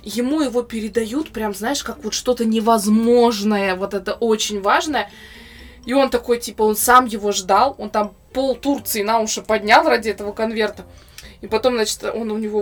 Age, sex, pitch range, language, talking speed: 20-39, female, 215-280 Hz, Russian, 175 wpm